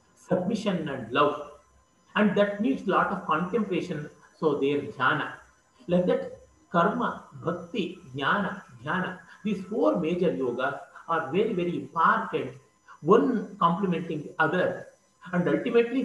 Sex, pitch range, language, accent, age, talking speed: male, 160-215 Hz, French, Indian, 50-69, 125 wpm